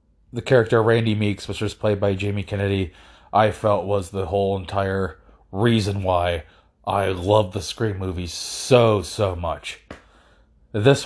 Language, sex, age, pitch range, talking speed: English, male, 30-49, 95-115 Hz, 145 wpm